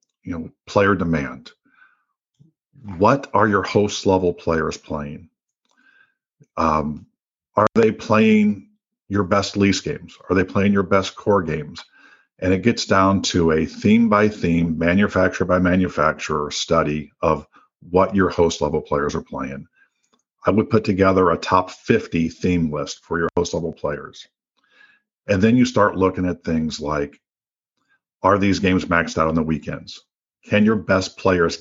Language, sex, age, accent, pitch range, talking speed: English, male, 50-69, American, 85-105 Hz, 155 wpm